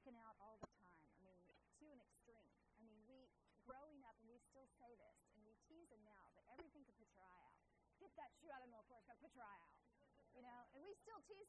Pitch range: 215-270 Hz